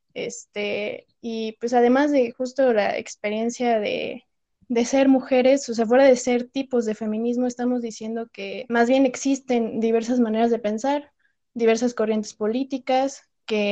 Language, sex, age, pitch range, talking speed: Spanish, female, 20-39, 220-260 Hz, 150 wpm